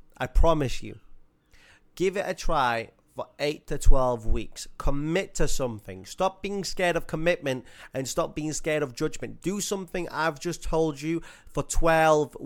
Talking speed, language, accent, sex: 165 wpm, English, British, male